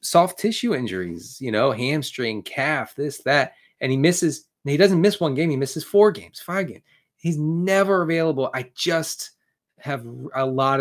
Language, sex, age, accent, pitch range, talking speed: English, male, 30-49, American, 120-160 Hz, 170 wpm